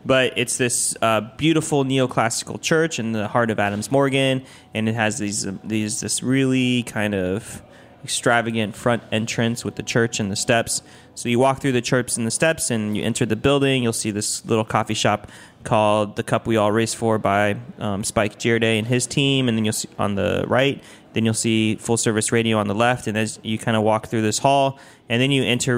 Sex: male